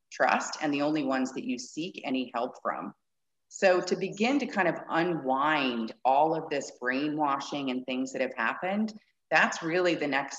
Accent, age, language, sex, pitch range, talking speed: American, 30-49, English, female, 125-155 Hz, 180 wpm